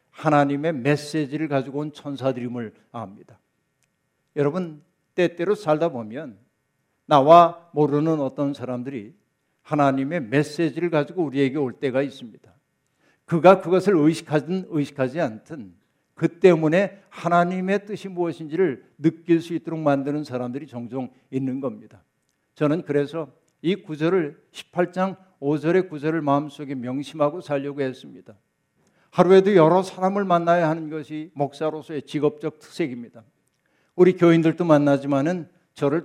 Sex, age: male, 60-79